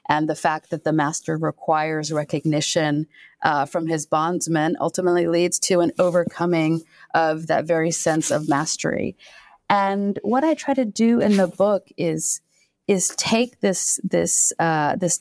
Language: English